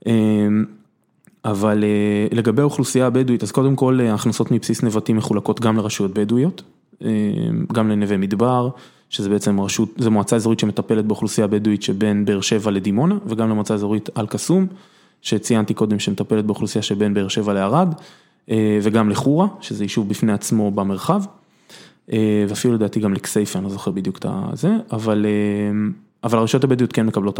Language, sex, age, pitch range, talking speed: Hebrew, male, 20-39, 105-120 Hz, 140 wpm